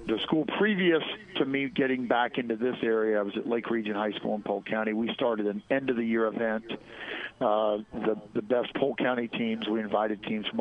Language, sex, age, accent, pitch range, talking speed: English, male, 50-69, American, 110-125 Hz, 220 wpm